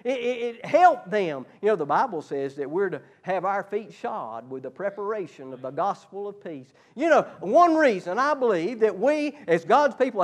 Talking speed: 210 wpm